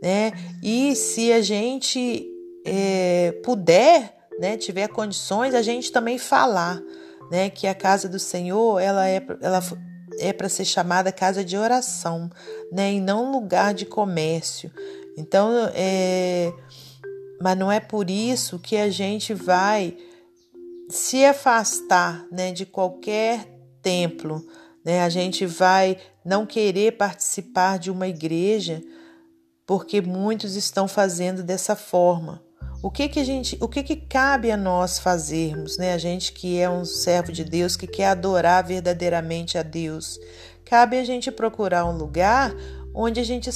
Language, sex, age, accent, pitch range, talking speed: Portuguese, female, 40-59, Brazilian, 175-235 Hz, 145 wpm